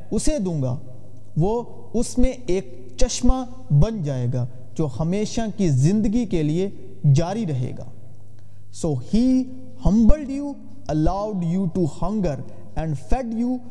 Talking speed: 135 wpm